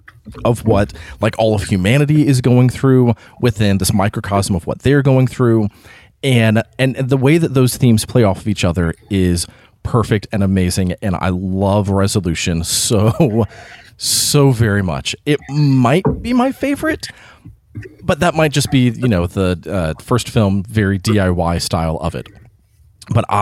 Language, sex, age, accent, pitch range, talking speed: English, male, 30-49, American, 100-130 Hz, 160 wpm